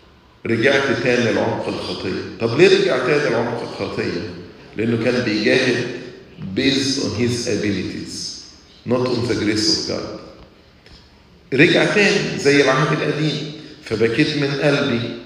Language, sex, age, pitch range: English, male, 50-69, 110-145 Hz